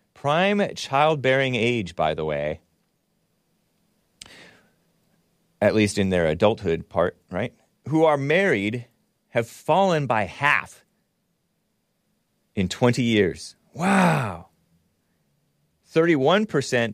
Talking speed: 95 wpm